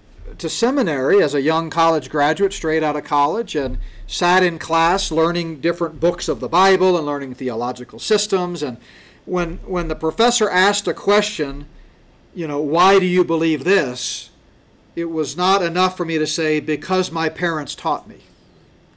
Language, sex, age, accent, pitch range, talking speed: English, male, 50-69, American, 155-195 Hz, 170 wpm